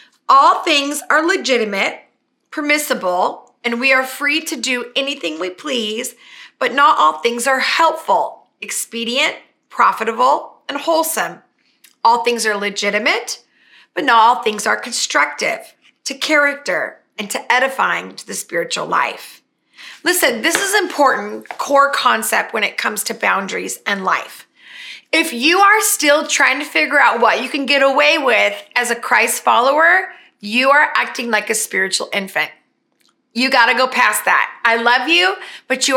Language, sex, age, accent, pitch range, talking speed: English, female, 30-49, American, 235-320 Hz, 155 wpm